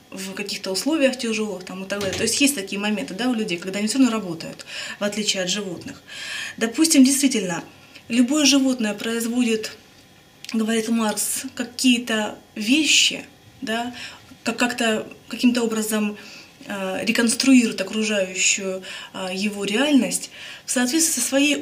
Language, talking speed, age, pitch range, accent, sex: Russian, 120 wpm, 20-39, 210-250 Hz, native, female